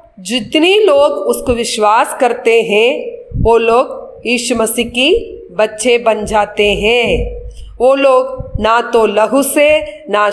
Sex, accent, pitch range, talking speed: female, native, 220-270 Hz, 130 wpm